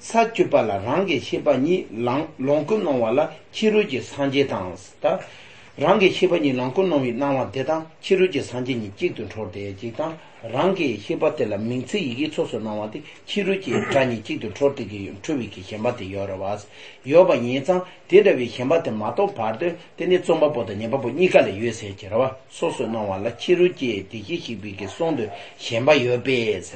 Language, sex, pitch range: English, male, 115-185 Hz